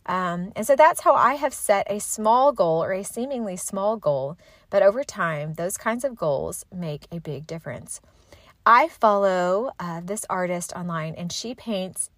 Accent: American